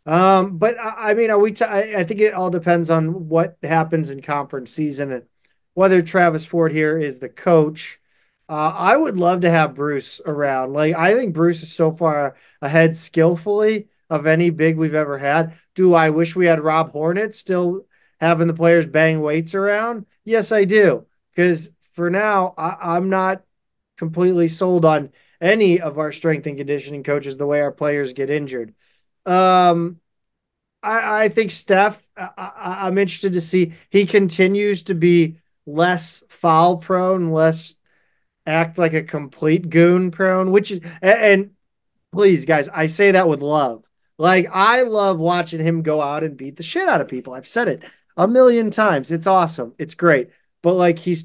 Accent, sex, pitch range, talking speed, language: American, male, 150-185 Hz, 175 wpm, English